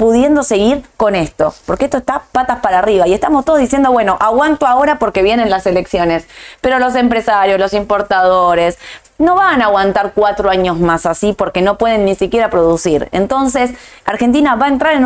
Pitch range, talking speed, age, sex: 185-250 Hz, 185 wpm, 20-39, female